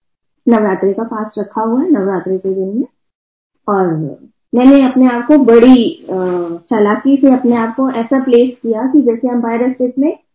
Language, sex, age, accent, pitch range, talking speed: Hindi, female, 20-39, native, 220-275 Hz, 150 wpm